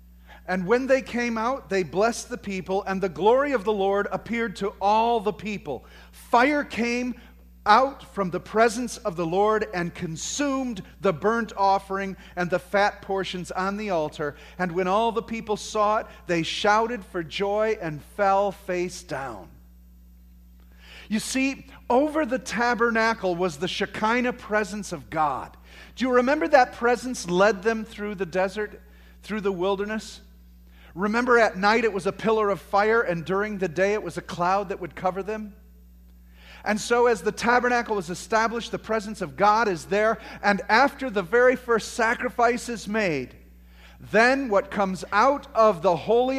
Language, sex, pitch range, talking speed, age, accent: English, male, 175-230 Hz, 165 wpm, 40-59, American